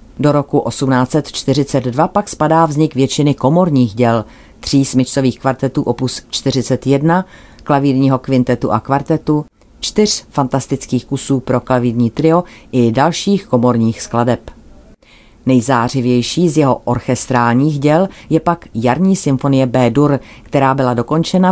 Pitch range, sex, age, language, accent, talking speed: 125-145 Hz, female, 40-59, Czech, native, 115 wpm